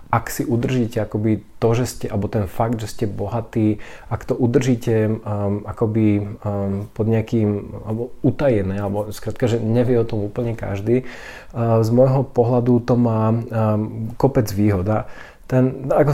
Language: Slovak